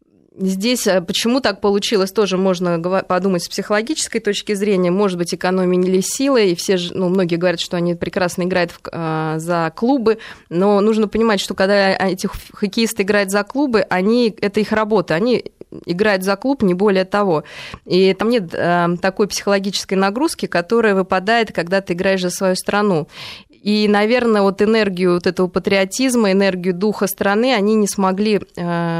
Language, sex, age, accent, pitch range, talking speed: Russian, female, 20-39, native, 180-210 Hz, 160 wpm